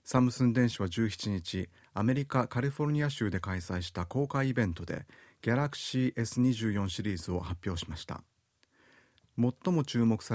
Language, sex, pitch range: Japanese, male, 90-125 Hz